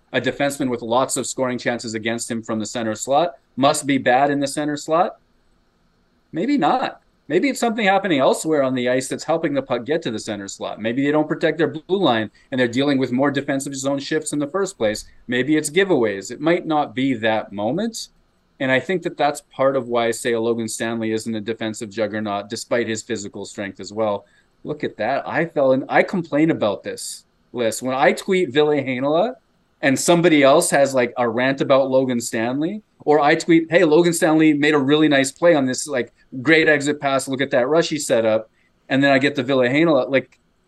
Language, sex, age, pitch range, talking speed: English, male, 30-49, 120-160 Hz, 210 wpm